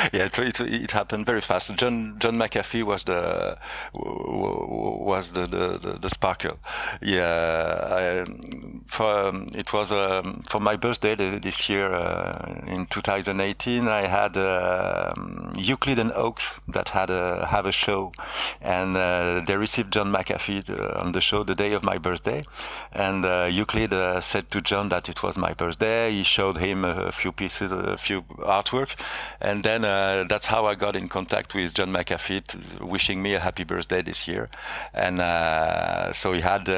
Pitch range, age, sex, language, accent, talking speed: 90-105 Hz, 50-69, male, English, French, 170 wpm